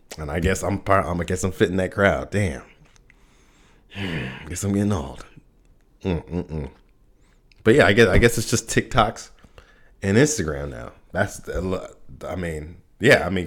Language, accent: English, American